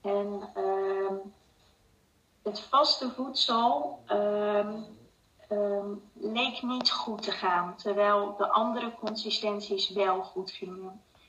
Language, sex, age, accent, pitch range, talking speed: Dutch, female, 30-49, Dutch, 200-225 Hz, 100 wpm